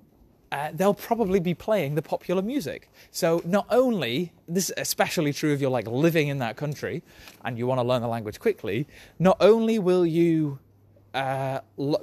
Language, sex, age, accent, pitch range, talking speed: English, male, 20-39, British, 140-220 Hz, 180 wpm